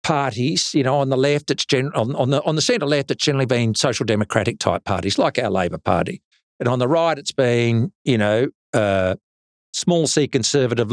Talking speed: 210 wpm